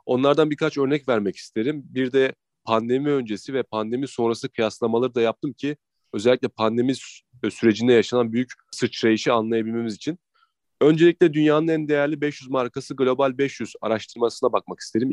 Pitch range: 115-150 Hz